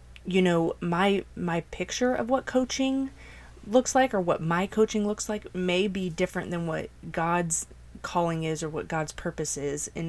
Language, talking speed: English, 180 wpm